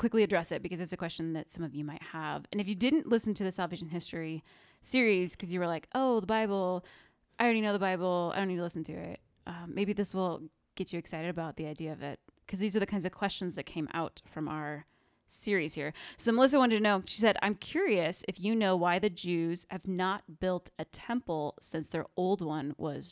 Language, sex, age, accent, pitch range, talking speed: English, female, 20-39, American, 160-205 Hz, 240 wpm